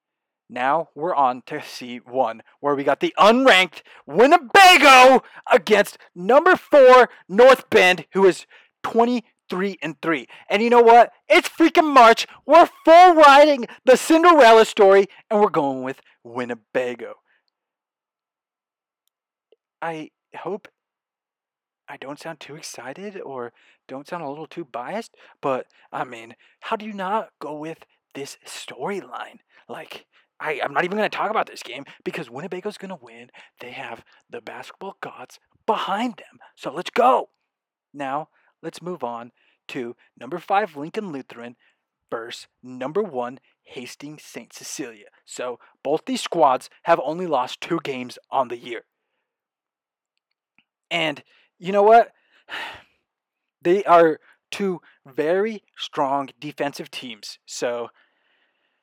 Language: English